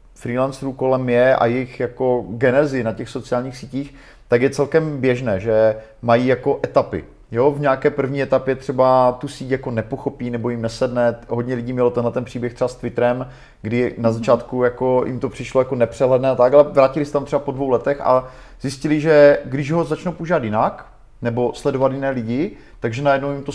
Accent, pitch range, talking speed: native, 120-140 Hz, 190 wpm